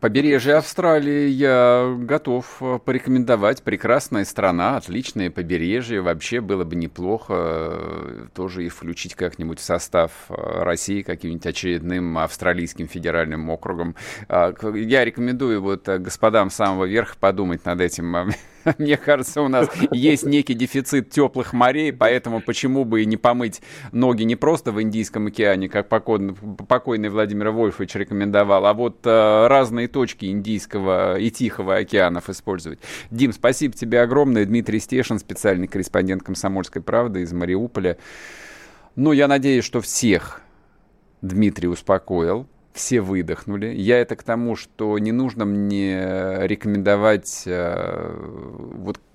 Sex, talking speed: male, 120 wpm